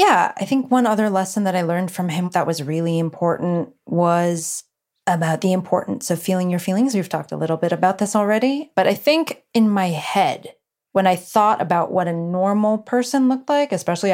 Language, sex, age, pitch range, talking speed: English, female, 20-39, 180-230 Hz, 205 wpm